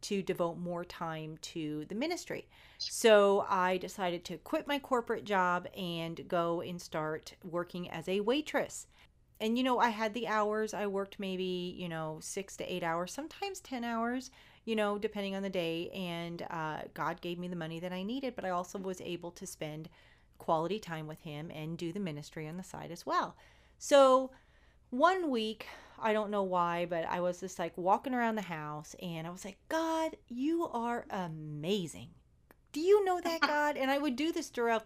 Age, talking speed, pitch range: 40-59, 195 wpm, 175-235 Hz